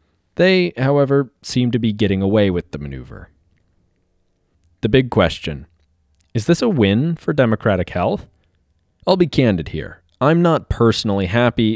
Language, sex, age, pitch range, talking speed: English, male, 30-49, 85-125 Hz, 145 wpm